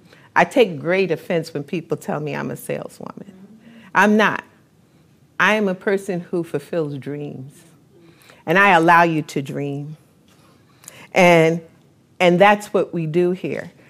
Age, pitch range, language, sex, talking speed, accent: 50-69, 155-195 Hz, English, female, 145 wpm, American